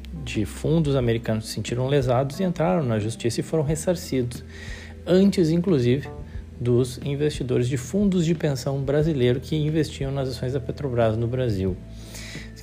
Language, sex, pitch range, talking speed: Portuguese, male, 110-140 Hz, 145 wpm